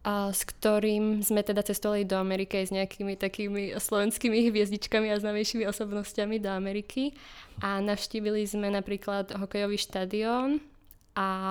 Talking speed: 125 wpm